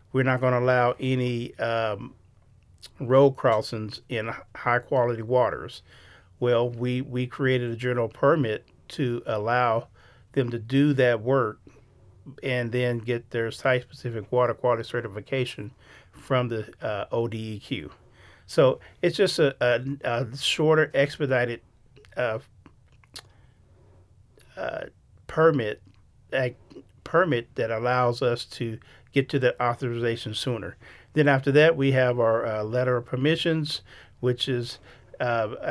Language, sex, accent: English, male, American